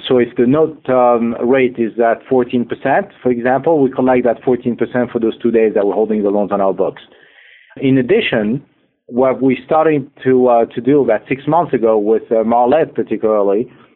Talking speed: 190 wpm